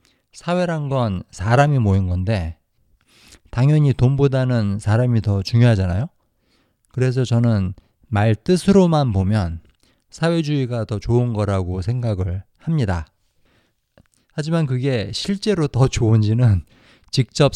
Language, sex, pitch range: Korean, male, 100-135 Hz